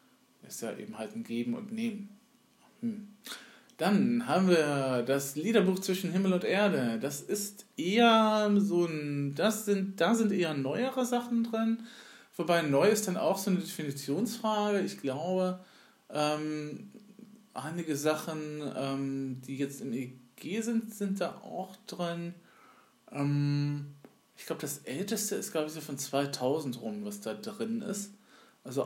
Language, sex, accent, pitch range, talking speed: German, male, German, 135-200 Hz, 150 wpm